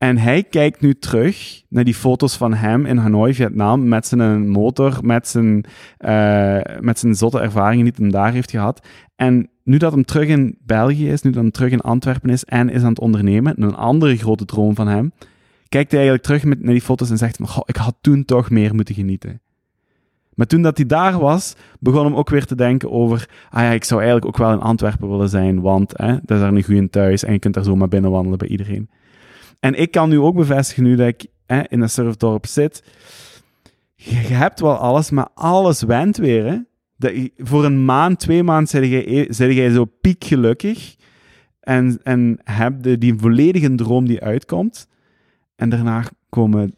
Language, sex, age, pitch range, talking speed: Dutch, male, 20-39, 110-135 Hz, 210 wpm